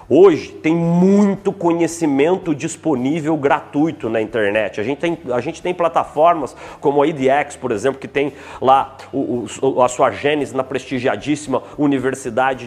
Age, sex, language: 40-59, male, Portuguese